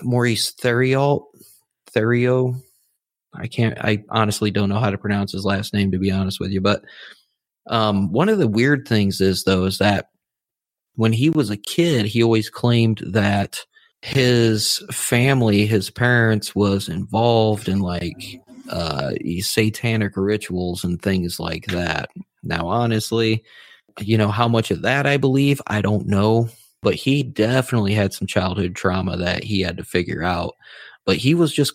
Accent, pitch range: American, 95-115 Hz